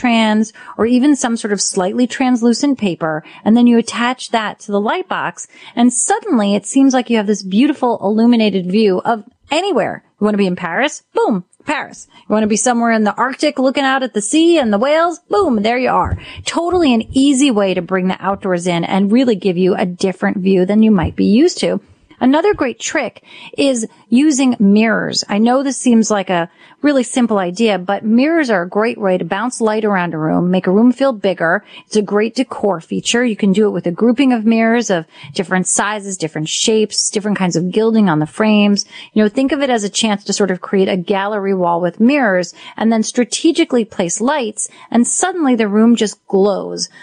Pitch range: 195-250 Hz